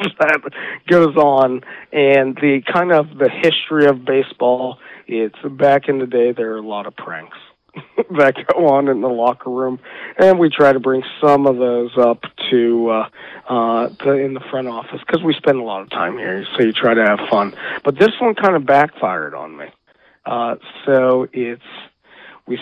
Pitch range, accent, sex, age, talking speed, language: 125-150 Hz, American, male, 40-59, 190 wpm, English